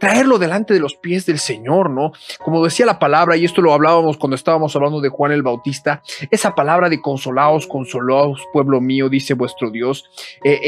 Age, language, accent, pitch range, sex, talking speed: 30-49, Spanish, Mexican, 145-180 Hz, male, 190 wpm